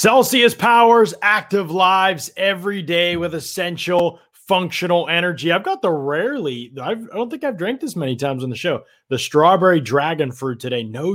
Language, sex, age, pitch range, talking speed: English, male, 30-49, 130-165 Hz, 165 wpm